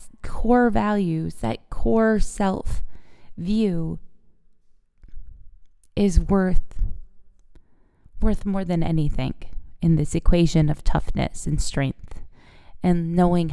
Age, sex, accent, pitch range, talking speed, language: 20-39, female, American, 160-210 Hz, 95 wpm, English